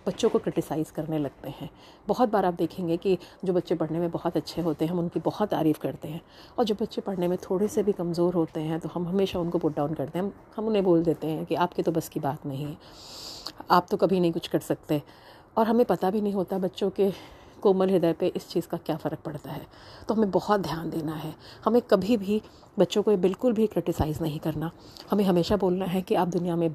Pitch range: 160-205 Hz